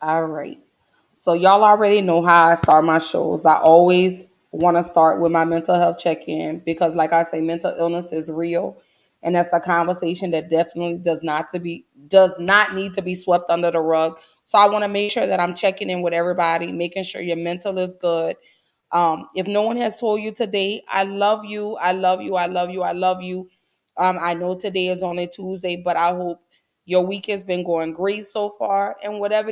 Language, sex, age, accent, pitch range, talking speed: English, female, 20-39, American, 165-190 Hz, 215 wpm